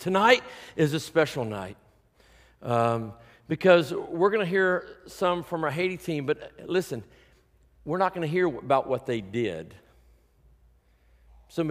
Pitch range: 120-165 Hz